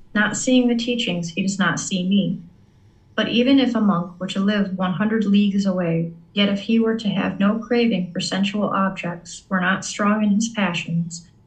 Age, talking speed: 40-59, 195 wpm